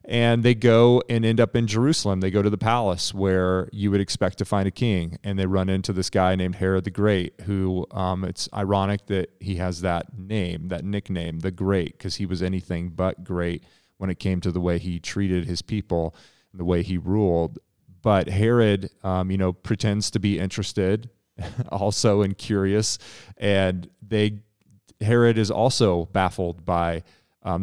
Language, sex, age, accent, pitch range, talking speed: English, male, 30-49, American, 90-105 Hz, 185 wpm